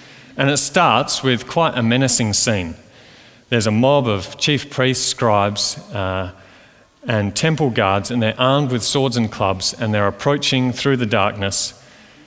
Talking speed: 155 wpm